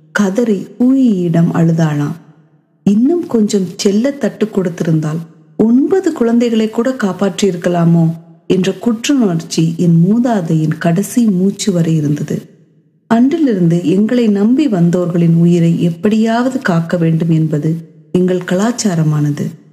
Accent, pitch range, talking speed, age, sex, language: native, 165-225 Hz, 95 wpm, 30-49, female, Tamil